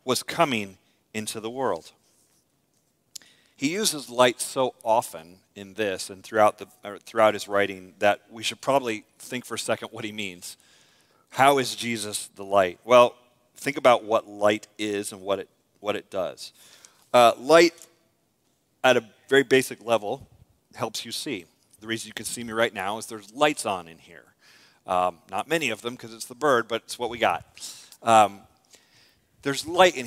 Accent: American